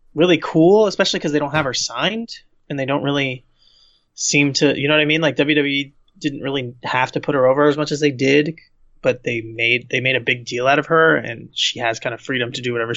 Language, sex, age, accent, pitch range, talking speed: English, male, 20-39, American, 130-160 Hz, 250 wpm